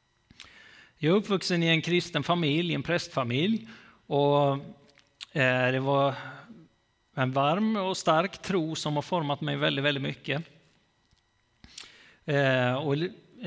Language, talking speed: Swedish, 110 wpm